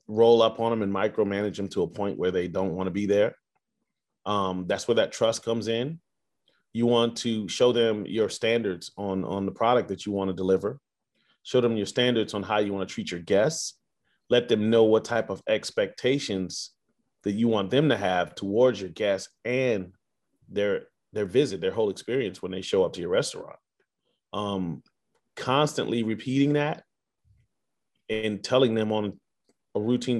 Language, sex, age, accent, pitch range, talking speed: English, male, 30-49, American, 100-125 Hz, 185 wpm